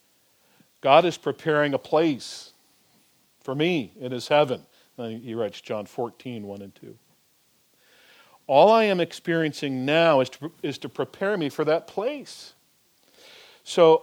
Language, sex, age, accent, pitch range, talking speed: English, male, 50-69, American, 130-175 Hz, 135 wpm